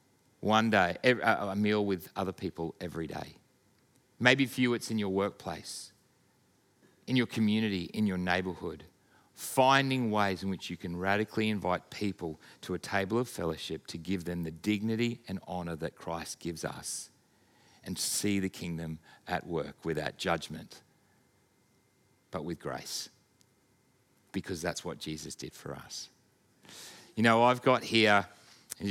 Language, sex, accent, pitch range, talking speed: English, male, Australian, 95-120 Hz, 145 wpm